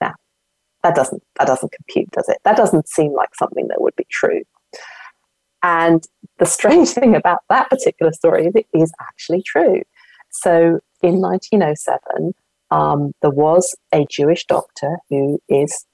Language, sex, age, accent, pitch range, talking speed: English, female, 40-59, British, 145-185 Hz, 150 wpm